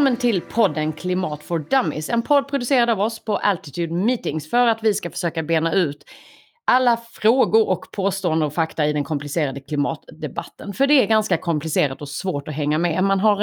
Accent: native